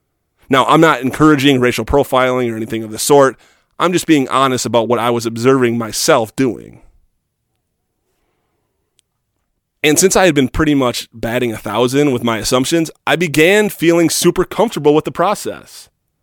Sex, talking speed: male, 160 wpm